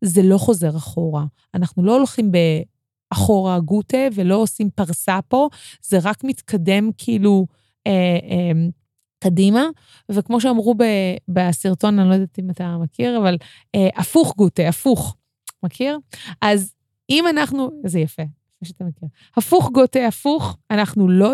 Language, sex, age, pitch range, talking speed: Hebrew, female, 20-39, 170-220 Hz, 130 wpm